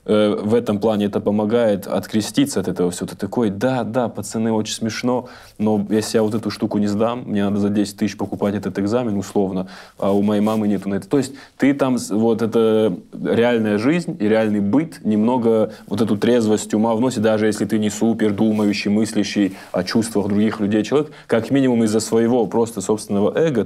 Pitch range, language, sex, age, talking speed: 100-115 Hz, Russian, male, 20-39, 195 wpm